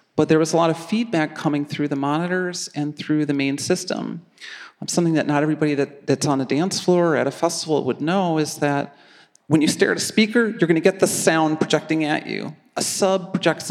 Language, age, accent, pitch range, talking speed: English, 40-59, American, 145-175 Hz, 215 wpm